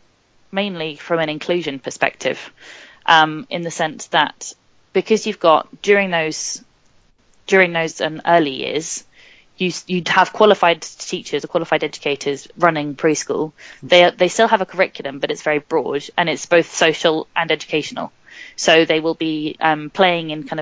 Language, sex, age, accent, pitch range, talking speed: English, female, 20-39, British, 155-175 Hz, 155 wpm